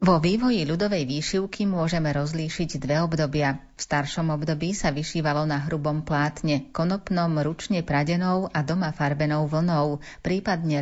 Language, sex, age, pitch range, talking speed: Slovak, female, 30-49, 150-180 Hz, 135 wpm